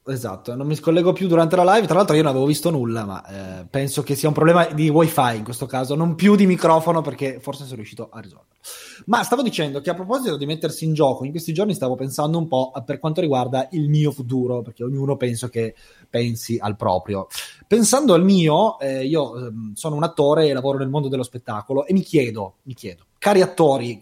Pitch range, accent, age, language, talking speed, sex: 125-165 Hz, native, 20-39, Italian, 220 wpm, male